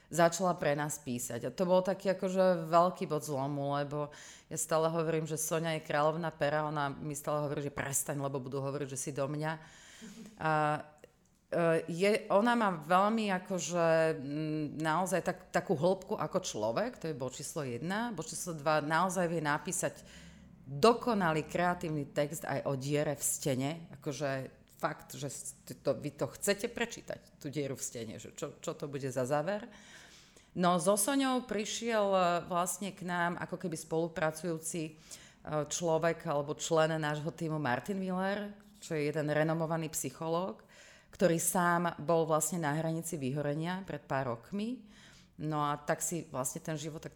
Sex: female